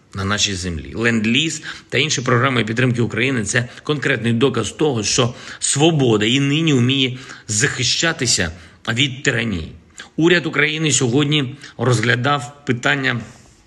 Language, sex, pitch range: Ukrainian, male, 110-140 Hz